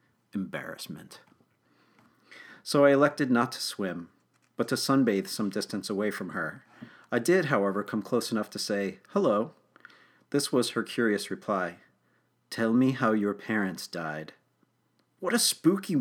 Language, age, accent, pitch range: English, 40-59, American, 100-135 Hz